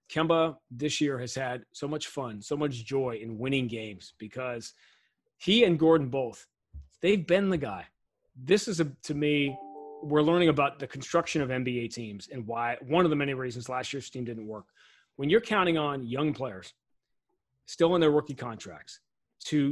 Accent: American